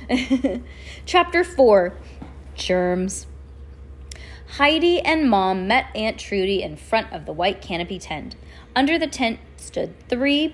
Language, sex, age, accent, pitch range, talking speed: English, female, 20-39, American, 180-280 Hz, 120 wpm